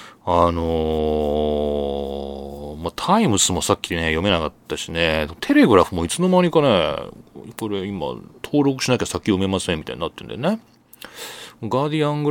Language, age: Japanese, 40-59